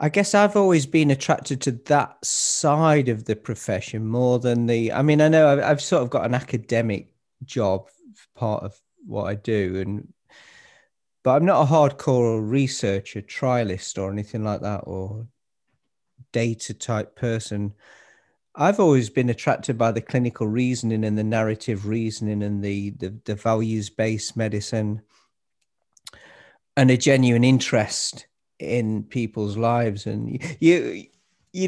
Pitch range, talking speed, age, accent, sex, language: 110-150 Hz, 145 wpm, 40-59, British, male, English